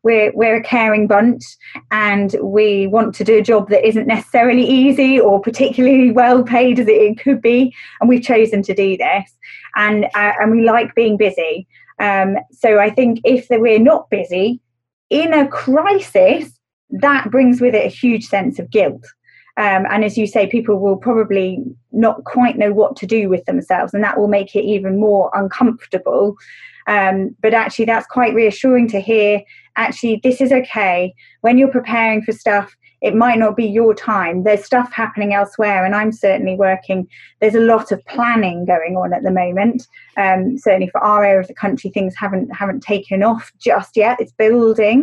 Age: 20-39